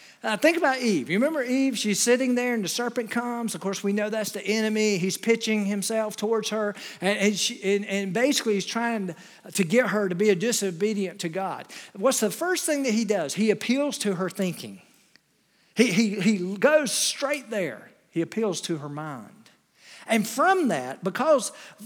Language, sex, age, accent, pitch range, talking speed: English, male, 50-69, American, 190-250 Hz, 195 wpm